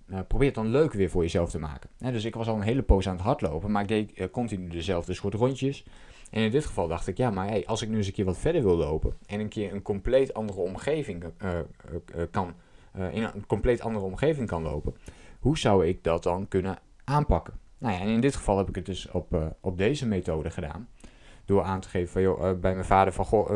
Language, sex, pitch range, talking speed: Dutch, male, 95-115 Hz, 260 wpm